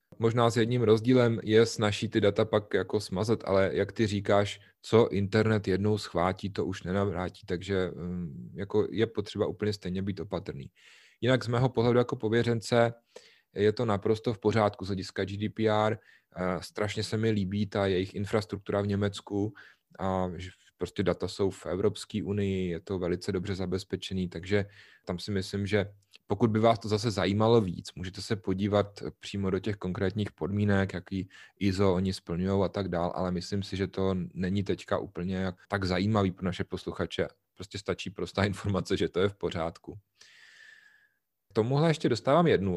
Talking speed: 165 wpm